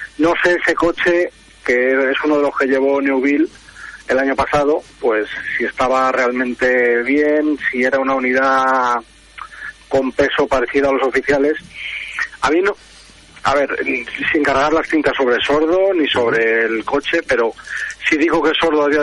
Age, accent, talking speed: 40-59, Spanish, 165 wpm